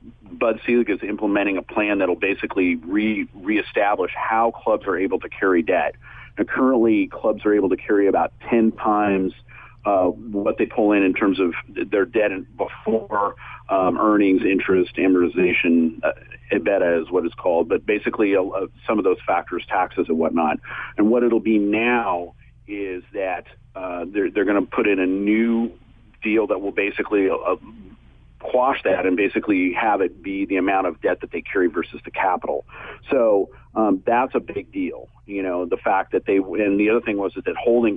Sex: male